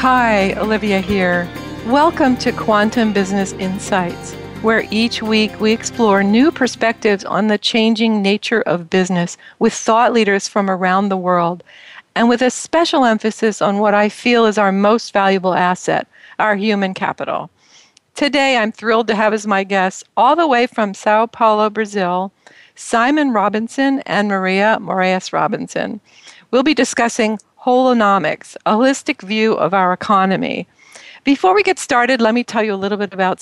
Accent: American